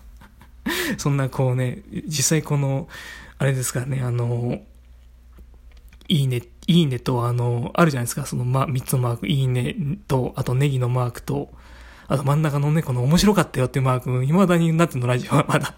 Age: 20-39